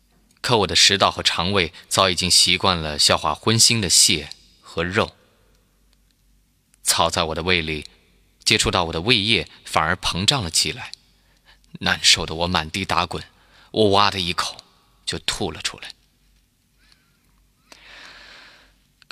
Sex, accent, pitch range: male, native, 80-95 Hz